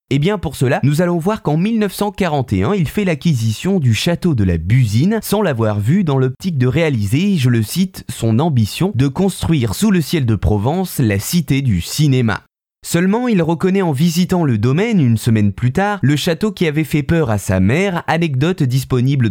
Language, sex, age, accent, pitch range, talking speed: French, male, 20-39, French, 120-175 Hz, 200 wpm